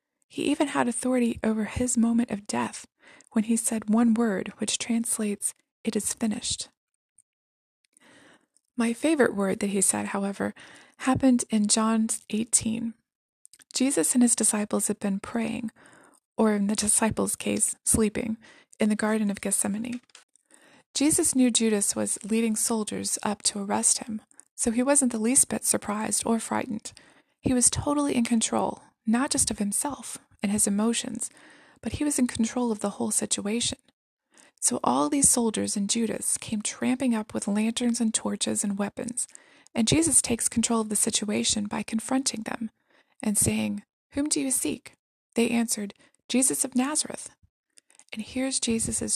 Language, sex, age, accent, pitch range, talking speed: English, female, 20-39, American, 220-265 Hz, 155 wpm